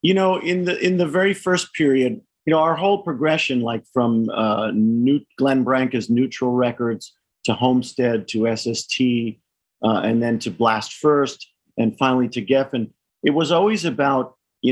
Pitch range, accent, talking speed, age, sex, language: 120-160 Hz, American, 165 wpm, 50-69, male, English